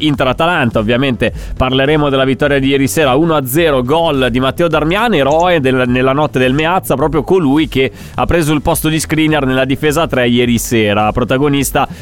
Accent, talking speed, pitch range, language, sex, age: native, 175 wpm, 115-155 Hz, Italian, male, 30-49